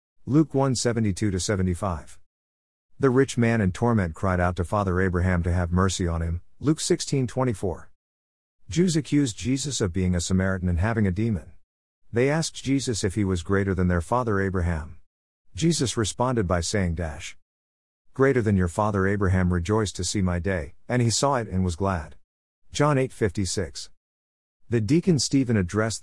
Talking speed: 160 wpm